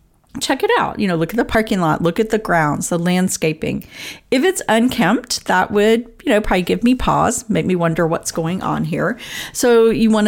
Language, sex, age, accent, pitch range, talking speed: English, female, 40-59, American, 175-230 Hz, 215 wpm